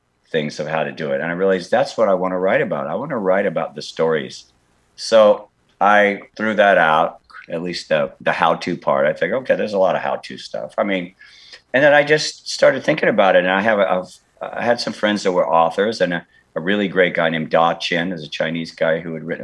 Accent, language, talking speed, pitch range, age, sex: American, English, 250 wpm, 75-95 Hz, 50-69, male